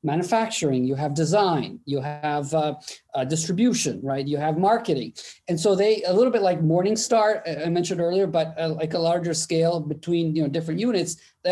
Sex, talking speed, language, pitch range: male, 190 wpm, English, 155-195 Hz